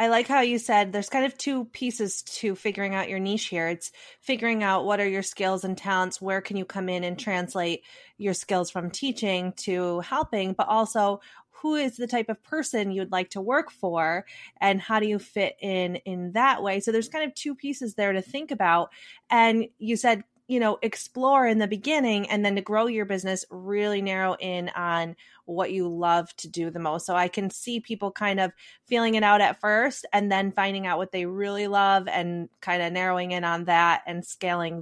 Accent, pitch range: American, 185-230 Hz